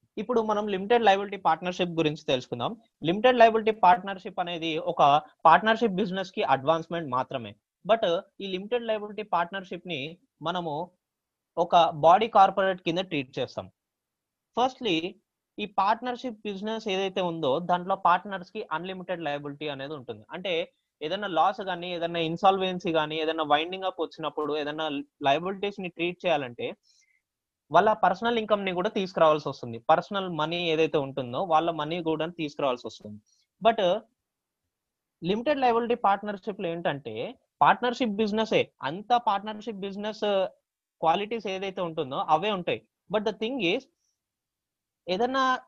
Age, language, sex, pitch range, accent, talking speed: 20-39, Telugu, male, 160-210 Hz, native, 125 wpm